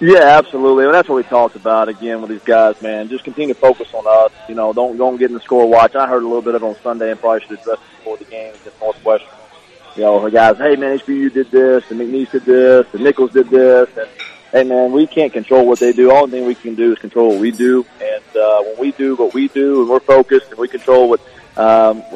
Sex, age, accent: male, 30-49, American